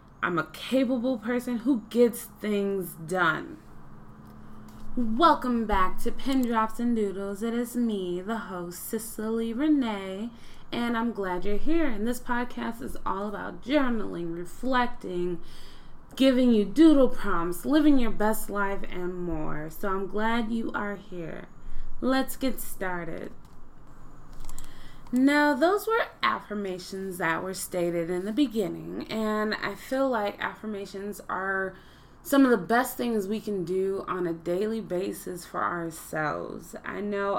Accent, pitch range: American, 185-245 Hz